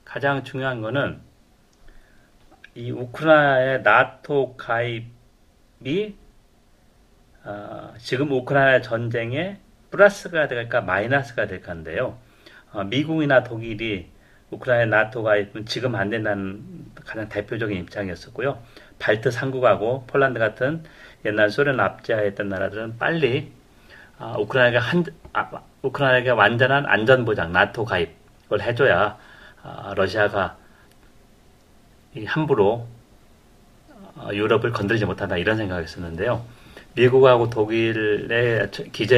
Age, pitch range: 40-59, 105-130 Hz